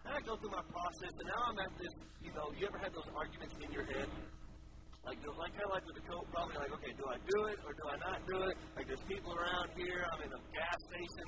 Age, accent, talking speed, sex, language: 40-59, American, 275 wpm, male, English